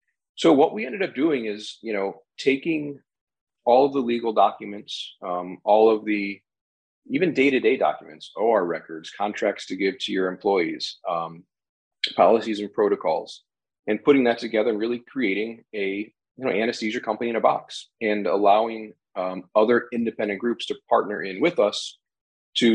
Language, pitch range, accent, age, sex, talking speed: English, 100-115 Hz, American, 40-59, male, 165 wpm